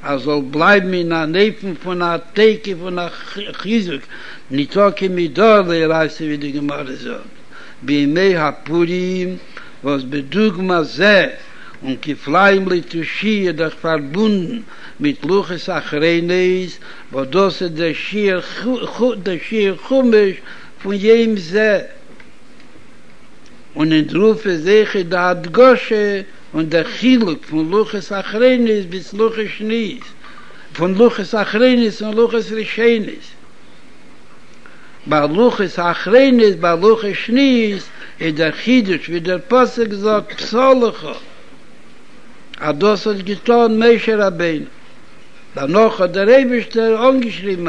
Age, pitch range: 60-79, 175-230 Hz